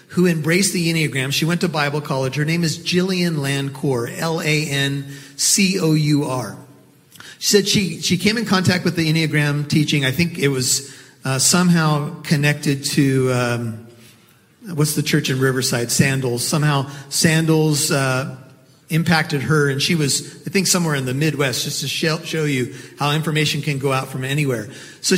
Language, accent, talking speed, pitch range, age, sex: English, American, 160 wpm, 135-170 Hz, 40-59, male